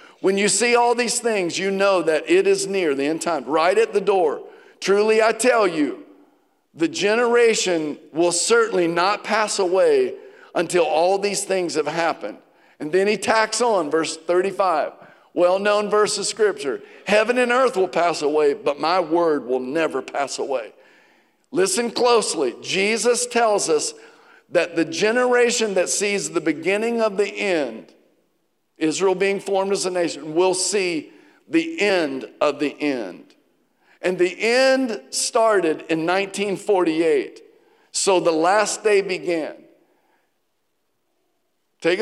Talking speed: 145 wpm